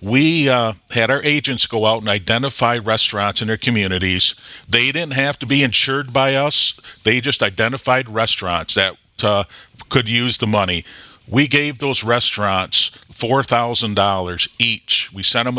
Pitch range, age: 110-145 Hz, 50-69